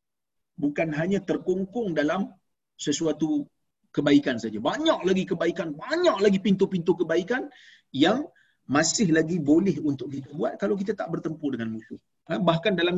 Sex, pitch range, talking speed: male, 160-225 Hz, 140 wpm